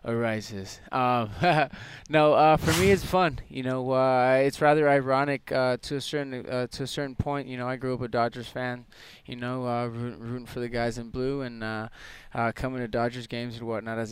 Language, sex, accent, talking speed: English, male, American, 210 wpm